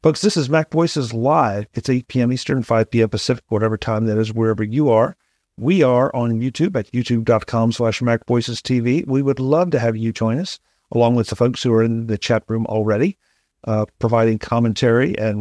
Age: 50-69